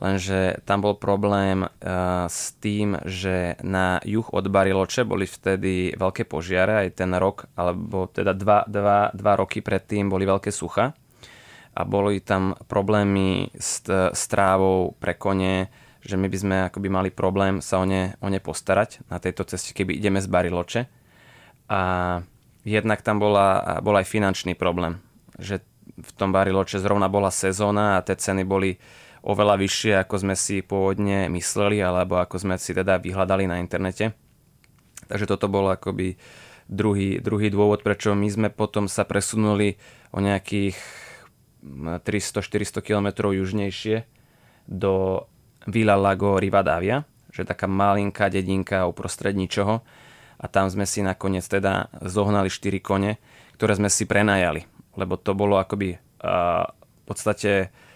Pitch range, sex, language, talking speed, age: 95-105 Hz, male, Czech, 145 wpm, 20-39